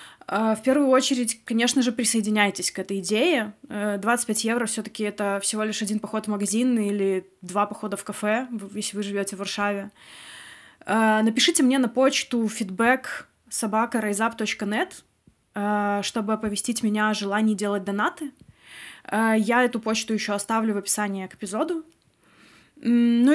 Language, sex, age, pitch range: Russian, female, 20-39, 205-235 Hz